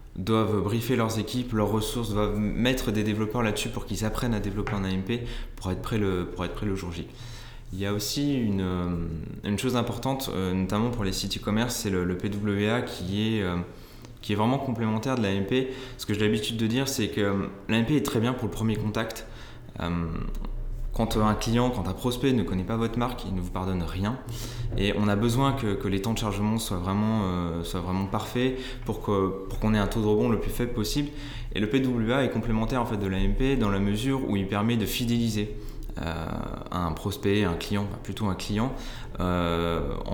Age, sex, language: 20-39, male, French